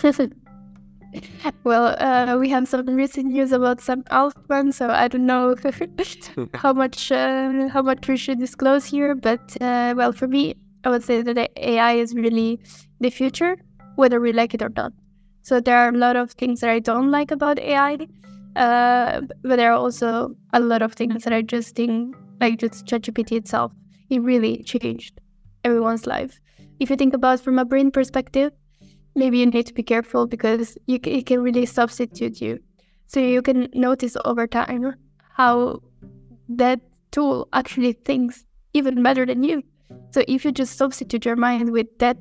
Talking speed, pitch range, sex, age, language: 180 wpm, 230-265 Hz, female, 10-29, English